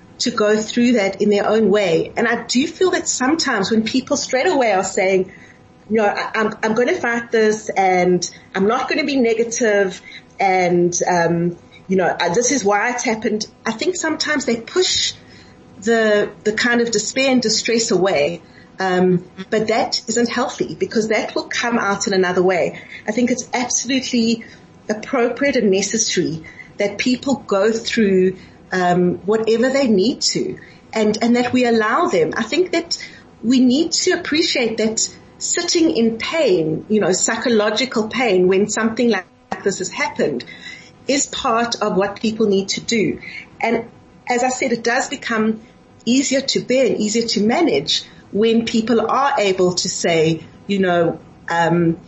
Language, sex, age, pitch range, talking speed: English, female, 30-49, 190-245 Hz, 165 wpm